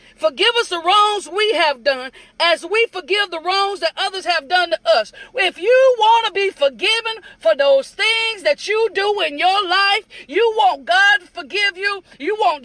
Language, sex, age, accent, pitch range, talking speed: English, female, 40-59, American, 330-435 Hz, 195 wpm